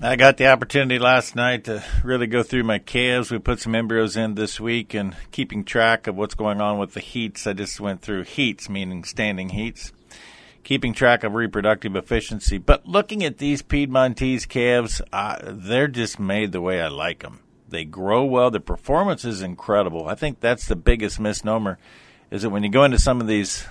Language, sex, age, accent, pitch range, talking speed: English, male, 50-69, American, 105-140 Hz, 200 wpm